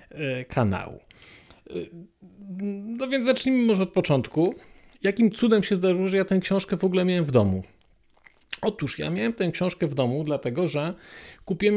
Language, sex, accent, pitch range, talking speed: Polish, male, native, 140-185 Hz, 155 wpm